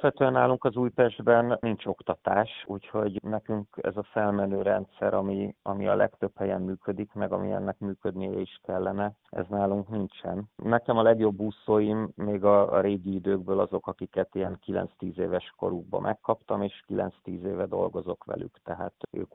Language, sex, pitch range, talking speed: Hungarian, male, 95-105 Hz, 150 wpm